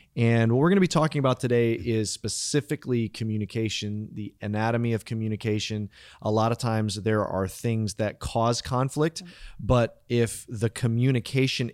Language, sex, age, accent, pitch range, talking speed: English, male, 30-49, American, 105-125 Hz, 155 wpm